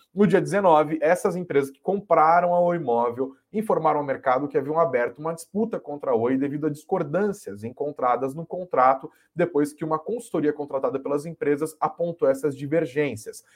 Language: Portuguese